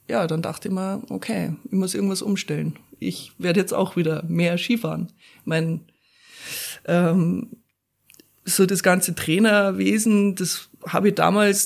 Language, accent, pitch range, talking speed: German, German, 175-215 Hz, 140 wpm